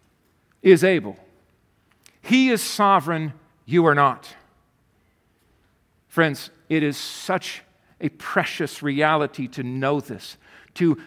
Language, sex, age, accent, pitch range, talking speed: English, male, 50-69, American, 175-230 Hz, 105 wpm